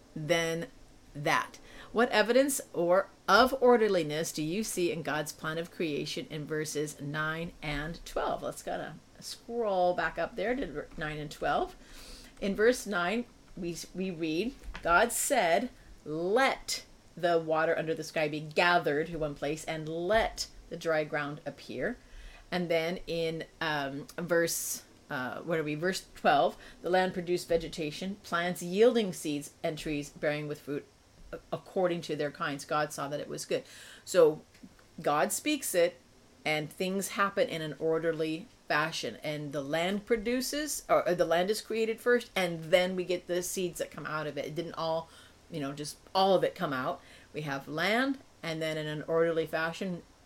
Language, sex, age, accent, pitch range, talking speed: English, female, 40-59, American, 155-190 Hz, 165 wpm